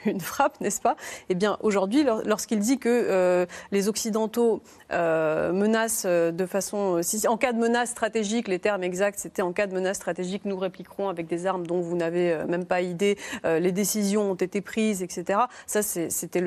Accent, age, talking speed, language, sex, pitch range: French, 30-49, 190 wpm, French, female, 185-225 Hz